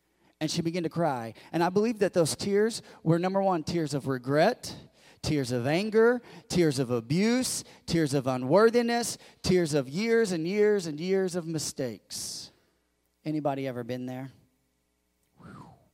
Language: English